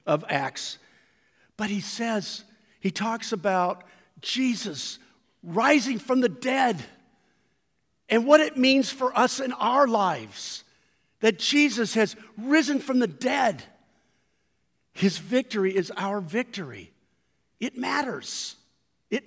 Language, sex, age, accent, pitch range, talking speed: English, male, 50-69, American, 185-230 Hz, 115 wpm